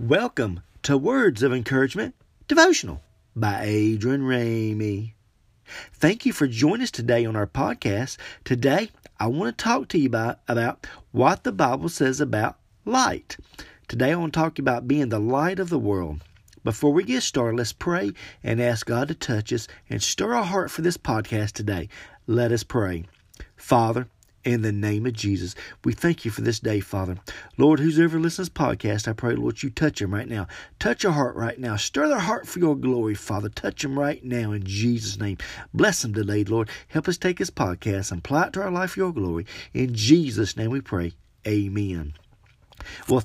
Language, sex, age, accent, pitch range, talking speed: English, male, 40-59, American, 105-145 Hz, 190 wpm